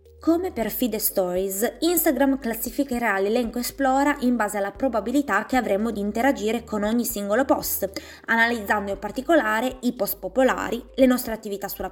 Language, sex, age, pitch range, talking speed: Italian, female, 20-39, 195-275 Hz, 150 wpm